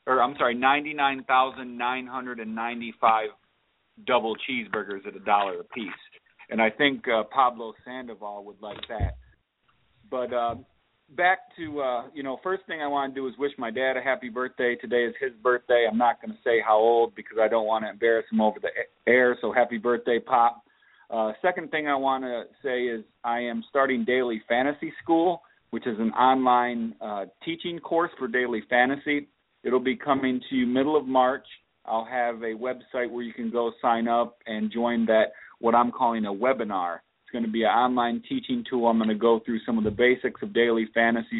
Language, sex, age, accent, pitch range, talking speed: English, male, 40-59, American, 115-130 Hz, 195 wpm